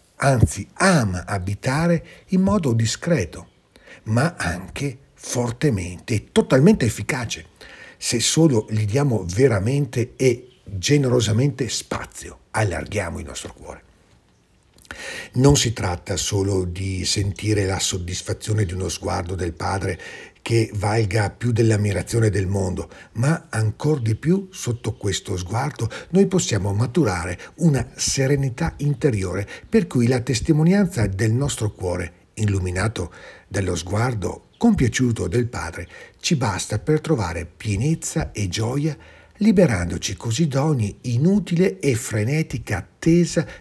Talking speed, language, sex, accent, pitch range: 115 wpm, Italian, male, native, 95-140 Hz